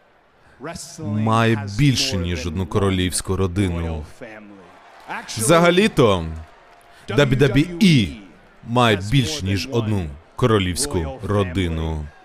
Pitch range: 100-165 Hz